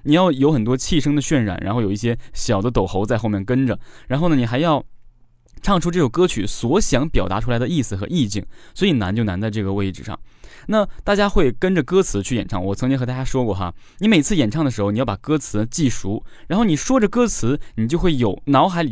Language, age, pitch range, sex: Chinese, 20-39, 115-180 Hz, male